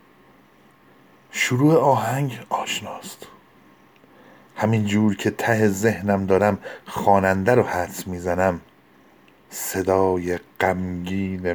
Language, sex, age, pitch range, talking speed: Persian, male, 50-69, 90-100 Hz, 80 wpm